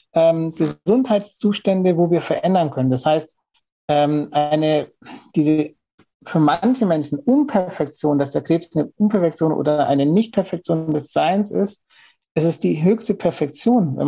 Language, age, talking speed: German, 60-79, 135 wpm